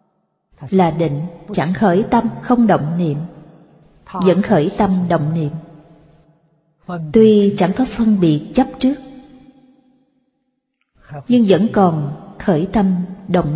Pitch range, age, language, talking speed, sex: 175-230 Hz, 30-49, Vietnamese, 115 wpm, female